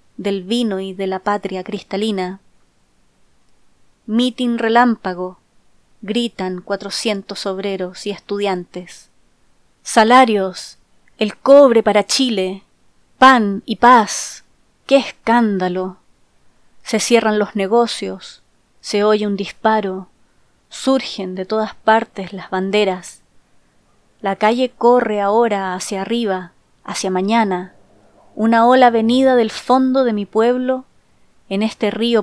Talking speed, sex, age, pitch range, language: 105 wpm, female, 20-39, 195-230 Hz, Spanish